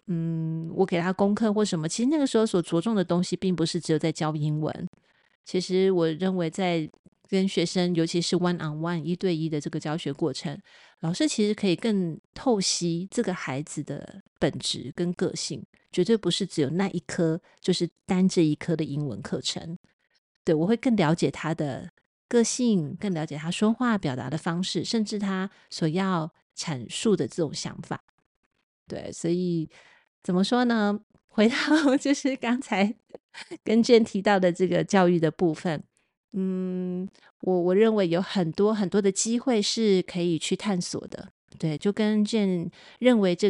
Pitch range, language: 165-210 Hz, Chinese